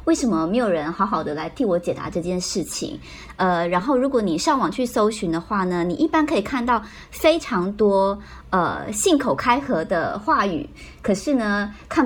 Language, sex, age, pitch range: Chinese, male, 20-39, 180-245 Hz